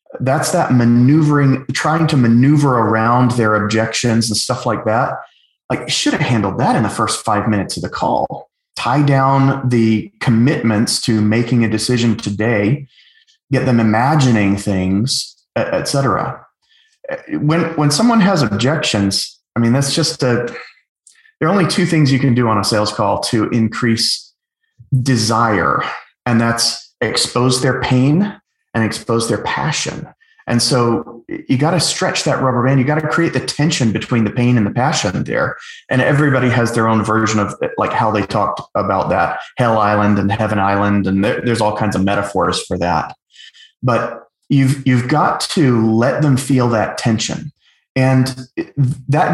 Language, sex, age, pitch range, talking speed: English, male, 30-49, 110-145 Hz, 165 wpm